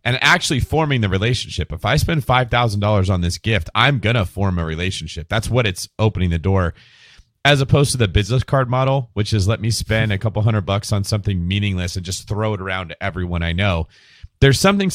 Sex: male